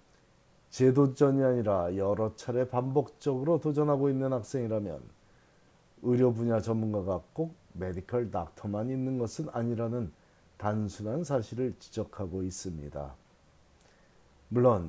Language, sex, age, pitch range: Korean, male, 40-59, 100-135 Hz